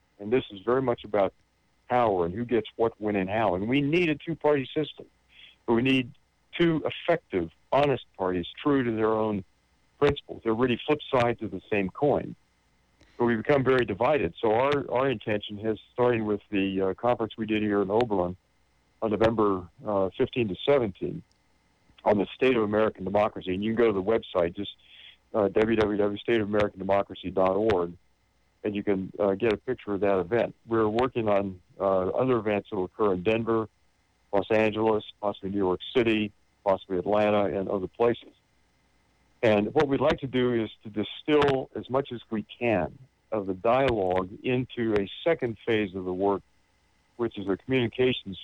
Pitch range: 95-120 Hz